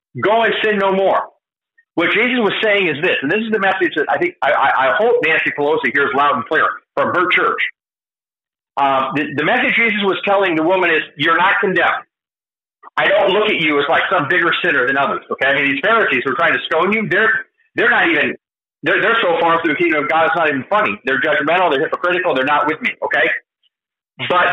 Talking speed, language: 225 wpm, English